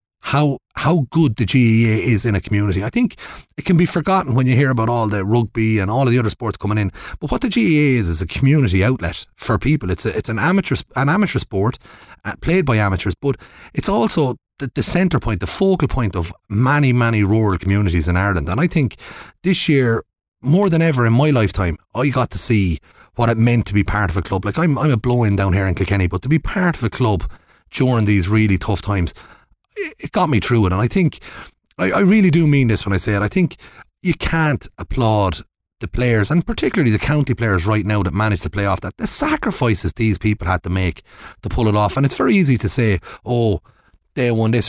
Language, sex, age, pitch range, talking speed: English, male, 30-49, 100-145 Hz, 230 wpm